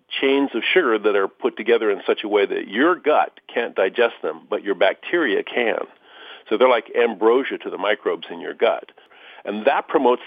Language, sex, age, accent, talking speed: English, male, 40-59, American, 200 wpm